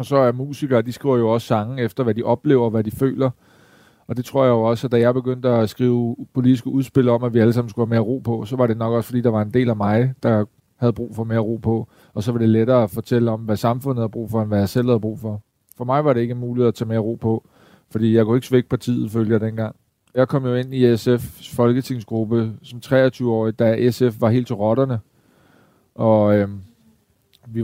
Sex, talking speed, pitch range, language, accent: male, 255 wpm, 115-130 Hz, Danish, native